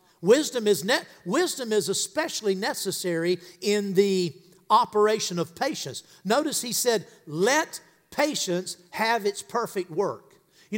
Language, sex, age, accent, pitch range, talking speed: English, male, 50-69, American, 185-240 Hz, 110 wpm